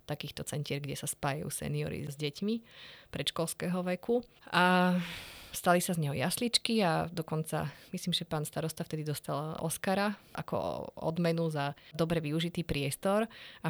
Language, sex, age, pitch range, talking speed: Slovak, female, 30-49, 150-175 Hz, 140 wpm